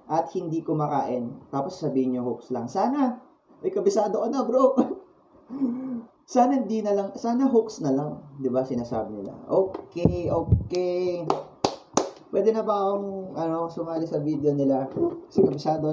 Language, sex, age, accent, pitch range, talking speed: Filipino, male, 20-39, native, 165-250 Hz, 155 wpm